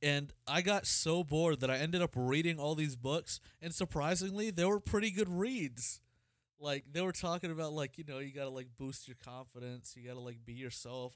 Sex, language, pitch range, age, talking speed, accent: male, English, 125-160 Hz, 30-49, 210 wpm, American